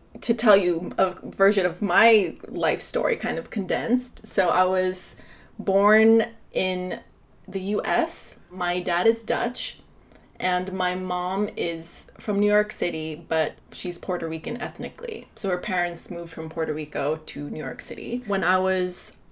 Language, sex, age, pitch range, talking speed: English, female, 20-39, 175-215 Hz, 155 wpm